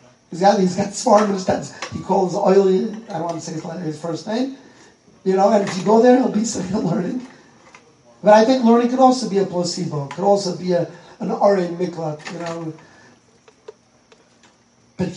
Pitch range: 180-230 Hz